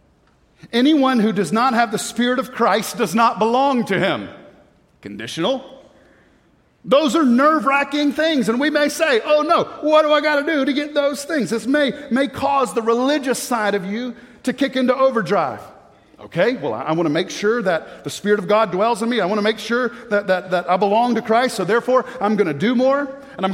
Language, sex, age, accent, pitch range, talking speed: English, male, 40-59, American, 175-260 Hz, 215 wpm